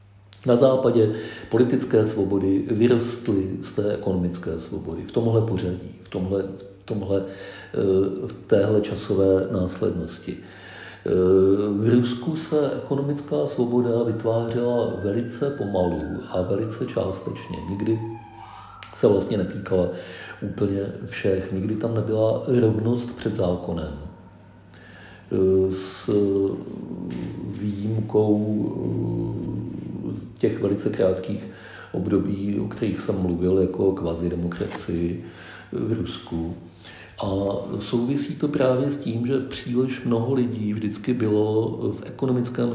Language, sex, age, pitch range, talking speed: Czech, male, 50-69, 95-115 Hz, 100 wpm